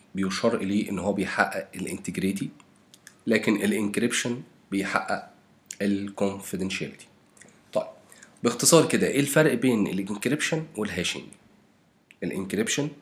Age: 40-59